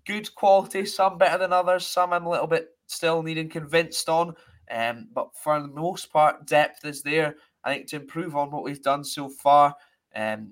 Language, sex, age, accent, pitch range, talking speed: English, male, 20-39, British, 130-155 Hz, 200 wpm